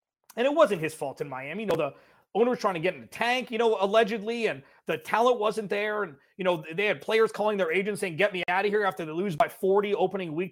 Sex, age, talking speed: male, 30-49, 275 wpm